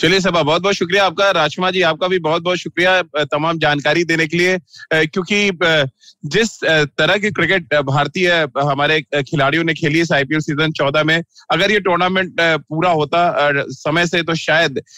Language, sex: Hindi, male